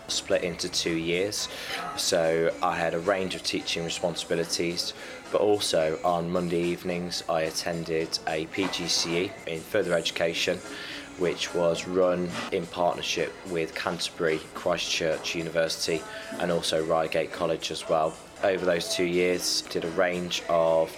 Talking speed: 135 wpm